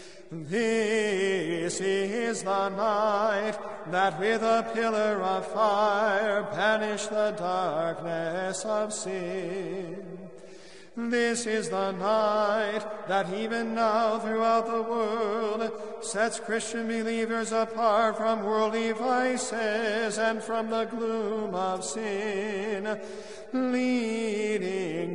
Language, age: English, 40-59